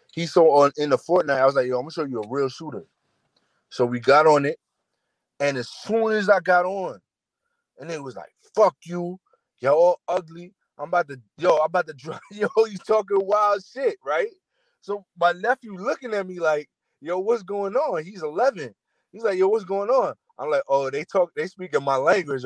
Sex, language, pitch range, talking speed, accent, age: male, English, 130-195 Hz, 220 wpm, American, 20-39